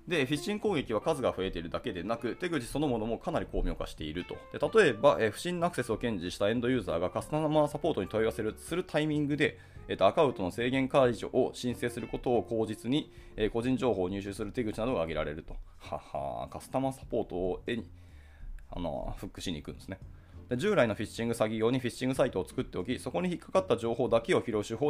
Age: 20-39